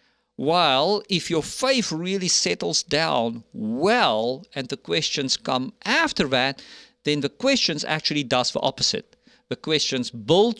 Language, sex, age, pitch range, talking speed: English, male, 50-69, 135-210 Hz, 135 wpm